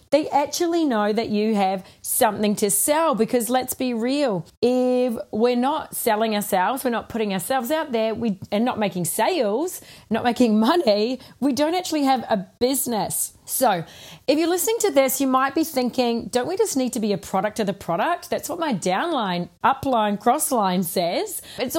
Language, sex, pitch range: English, female, 220-275 Hz